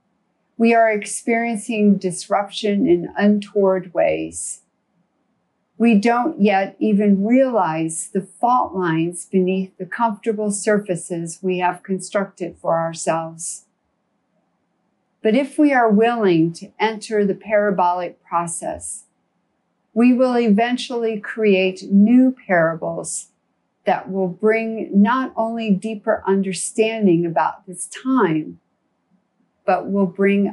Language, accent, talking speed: English, American, 105 wpm